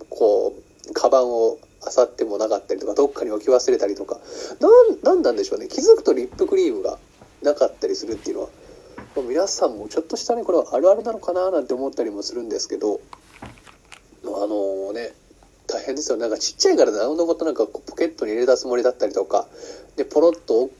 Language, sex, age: Japanese, male, 40-59